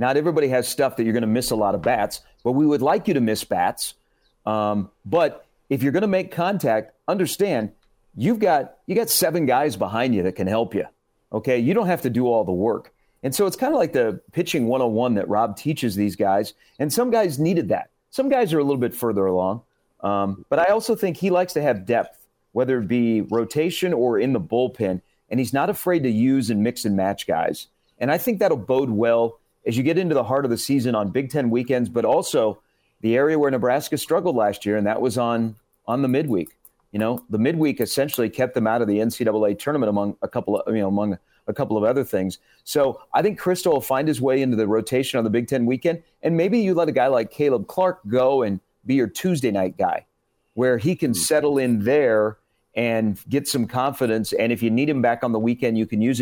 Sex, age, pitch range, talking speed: male, 40-59, 110-145 Hz, 240 wpm